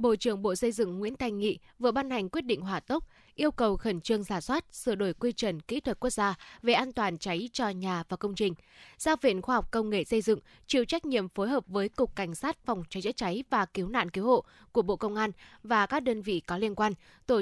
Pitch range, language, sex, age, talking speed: 200-245 Hz, Vietnamese, female, 10-29, 260 wpm